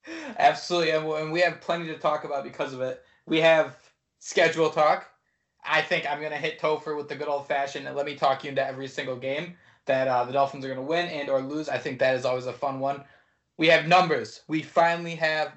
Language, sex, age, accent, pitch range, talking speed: English, male, 20-39, American, 140-180 Hz, 230 wpm